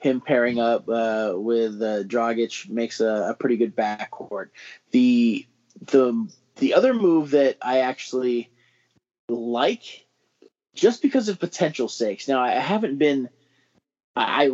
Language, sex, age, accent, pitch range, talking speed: English, male, 20-39, American, 125-150 Hz, 130 wpm